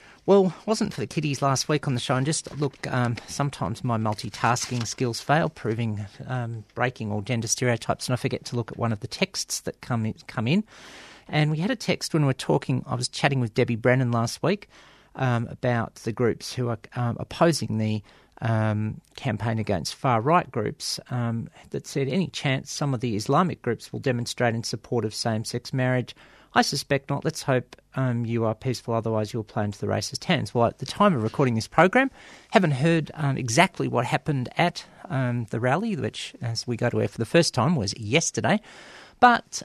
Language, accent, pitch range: English, Australian, 120-170 Hz